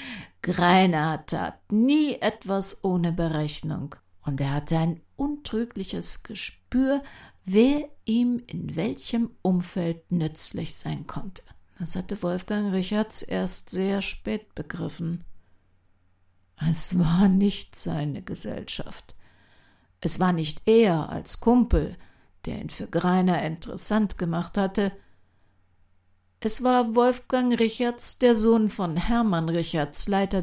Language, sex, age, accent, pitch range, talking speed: German, female, 60-79, German, 150-205 Hz, 110 wpm